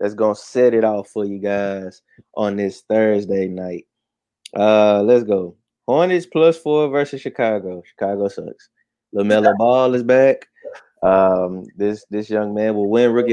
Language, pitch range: English, 100-120 Hz